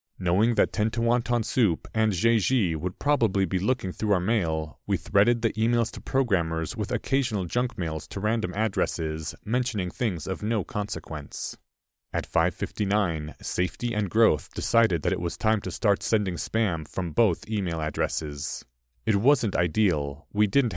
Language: English